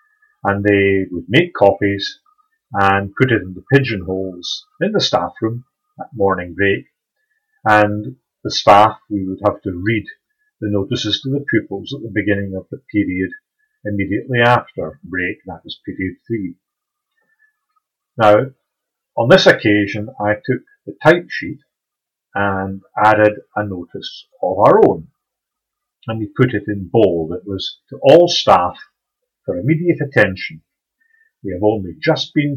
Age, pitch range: 40-59, 100-165 Hz